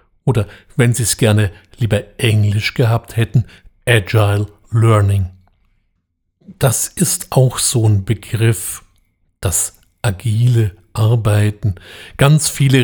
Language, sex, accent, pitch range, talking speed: German, male, German, 105-130 Hz, 105 wpm